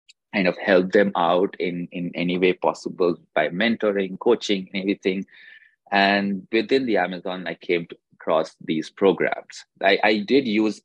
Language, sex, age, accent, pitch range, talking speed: English, male, 30-49, Indian, 90-100 Hz, 150 wpm